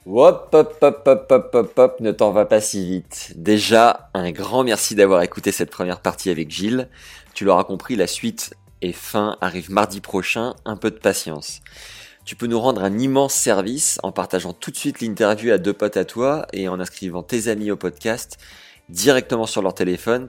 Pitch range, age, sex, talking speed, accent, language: 90-115 Hz, 20-39, male, 200 wpm, French, French